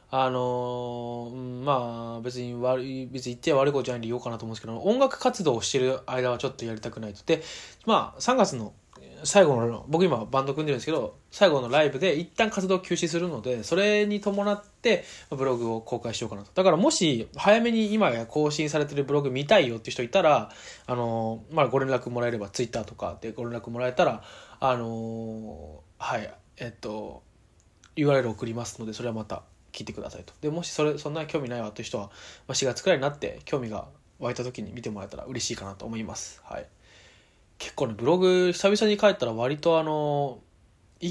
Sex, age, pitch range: male, 20-39, 110-155 Hz